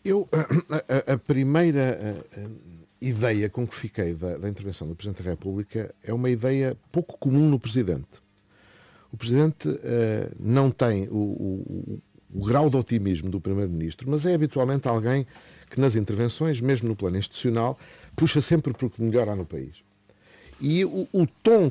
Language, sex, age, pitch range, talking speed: Portuguese, male, 50-69, 100-135 Hz, 165 wpm